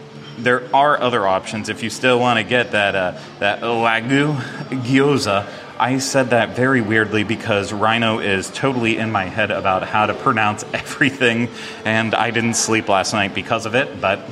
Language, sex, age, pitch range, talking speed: English, male, 30-49, 100-125 Hz, 175 wpm